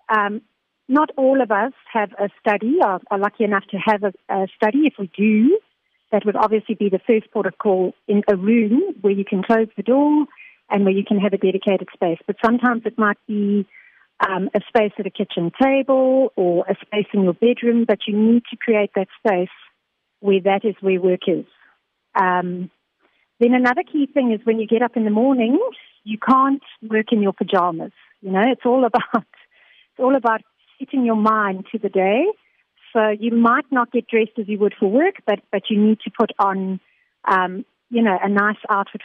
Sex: female